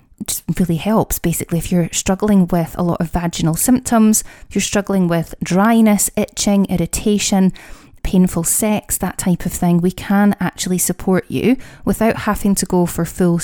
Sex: female